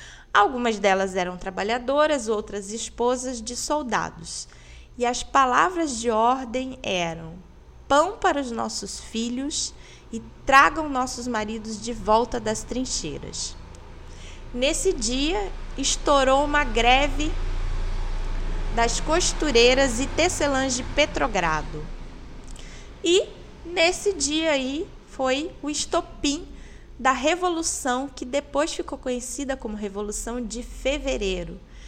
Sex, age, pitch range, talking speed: female, 20-39, 210-285 Hz, 105 wpm